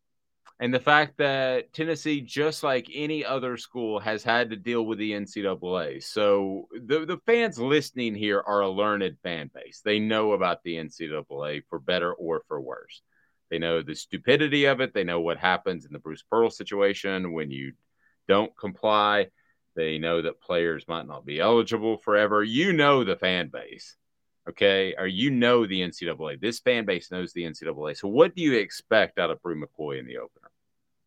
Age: 30-49